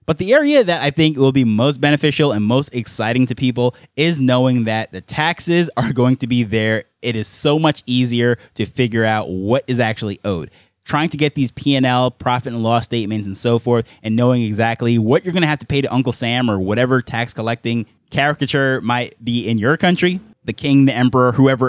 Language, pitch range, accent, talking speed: English, 115-145 Hz, American, 215 wpm